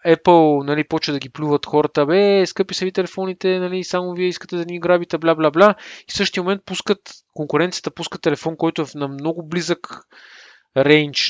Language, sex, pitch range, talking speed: Bulgarian, male, 140-185 Hz, 180 wpm